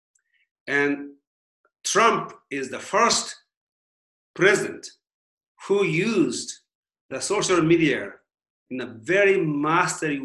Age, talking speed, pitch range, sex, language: 40-59, 90 wpm, 135-175 Hz, male, English